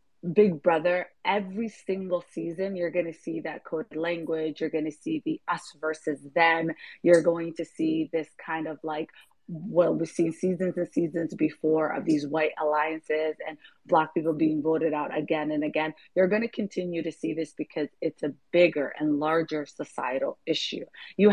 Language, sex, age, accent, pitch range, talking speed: English, female, 30-49, American, 160-195 Hz, 180 wpm